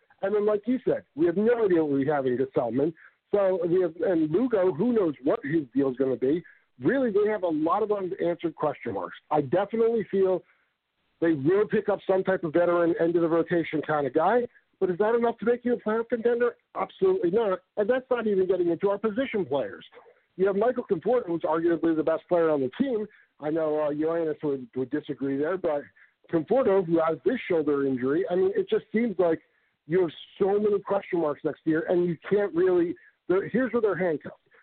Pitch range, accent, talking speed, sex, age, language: 155-230 Hz, American, 220 wpm, male, 50-69, English